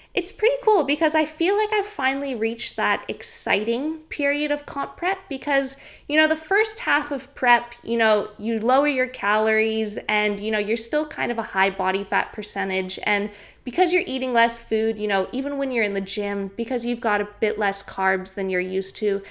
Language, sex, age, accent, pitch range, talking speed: English, female, 20-39, American, 205-270 Hz, 210 wpm